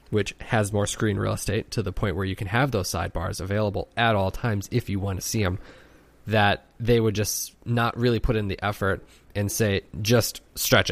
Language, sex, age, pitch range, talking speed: English, male, 20-39, 95-110 Hz, 215 wpm